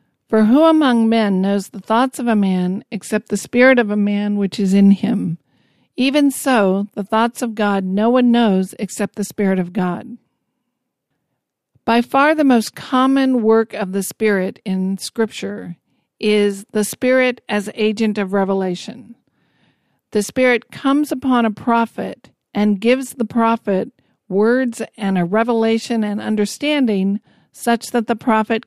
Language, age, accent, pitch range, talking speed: English, 50-69, American, 195-235 Hz, 150 wpm